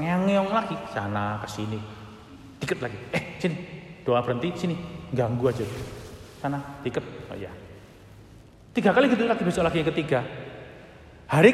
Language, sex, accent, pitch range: Indonesian, male, native, 120-170 Hz